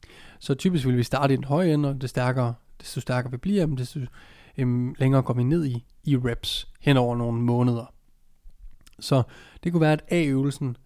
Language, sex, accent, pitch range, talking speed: Danish, male, native, 120-145 Hz, 190 wpm